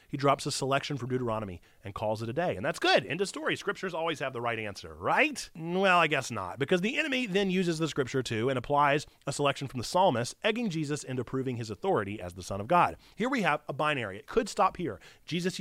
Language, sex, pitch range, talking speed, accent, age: English, male, 120-190 Hz, 245 wpm, American, 30-49